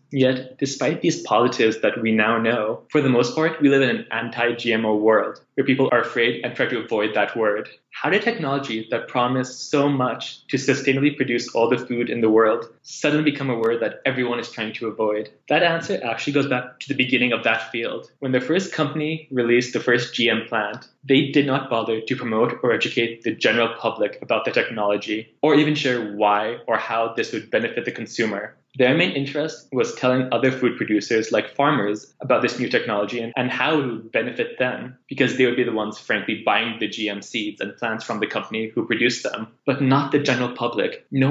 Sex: male